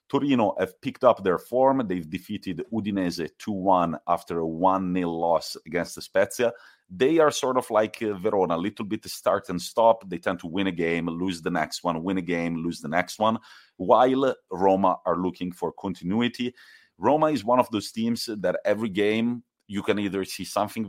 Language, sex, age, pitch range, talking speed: English, male, 30-49, 85-110 Hz, 185 wpm